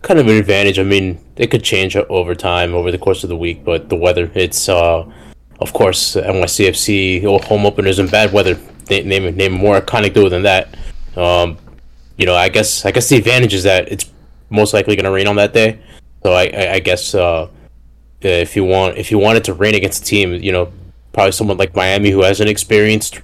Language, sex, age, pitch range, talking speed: English, male, 20-39, 85-105 Hz, 215 wpm